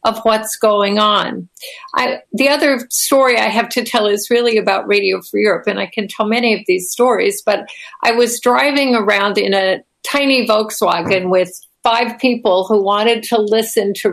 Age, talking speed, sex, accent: 60-79, 185 wpm, female, American